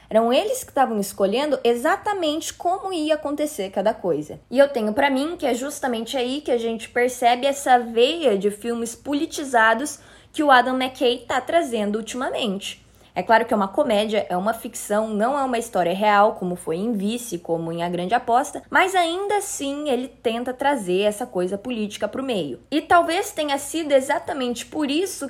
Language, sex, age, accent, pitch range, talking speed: Portuguese, female, 20-39, Brazilian, 220-295 Hz, 185 wpm